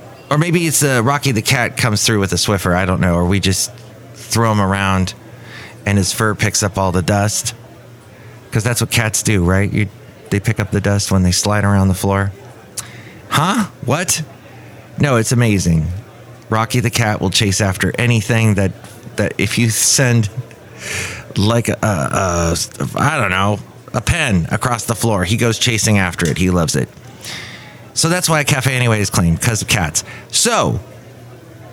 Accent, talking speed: American, 185 wpm